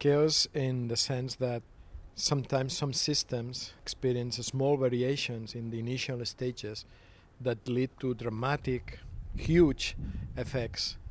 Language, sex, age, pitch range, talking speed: Finnish, male, 50-69, 105-140 Hz, 115 wpm